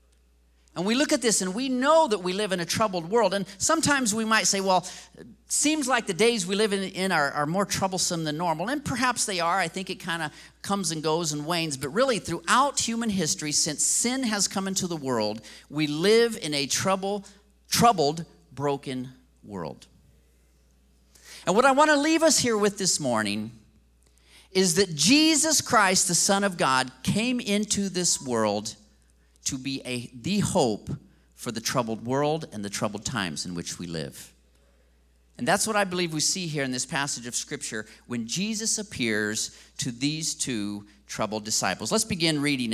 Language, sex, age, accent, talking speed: English, male, 40-59, American, 185 wpm